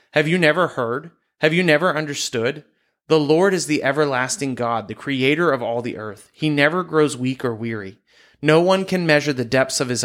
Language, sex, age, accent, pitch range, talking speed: English, male, 30-49, American, 120-155 Hz, 205 wpm